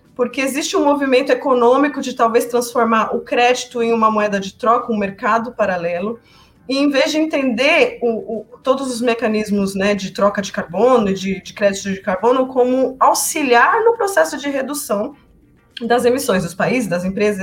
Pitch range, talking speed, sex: 205-255 Hz, 165 wpm, female